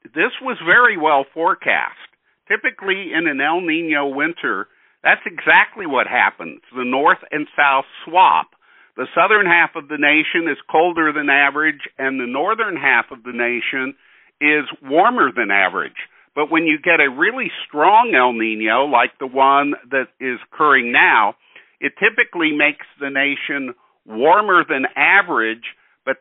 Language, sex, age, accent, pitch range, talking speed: English, male, 50-69, American, 130-165 Hz, 150 wpm